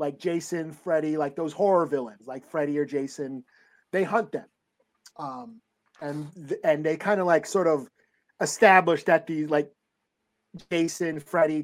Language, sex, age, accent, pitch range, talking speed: English, male, 30-49, American, 145-195 Hz, 160 wpm